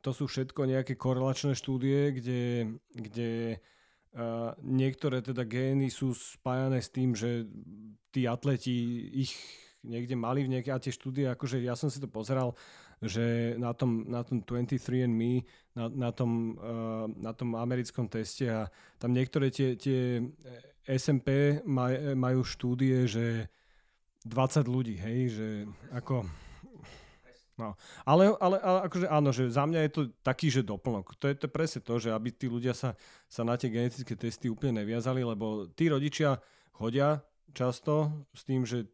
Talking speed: 155 wpm